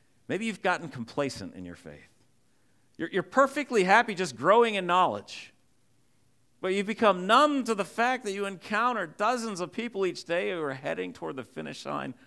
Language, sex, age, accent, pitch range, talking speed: English, male, 50-69, American, 95-145 Hz, 180 wpm